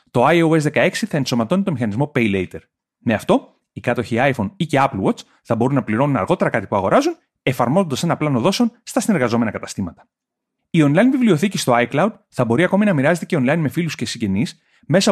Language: Greek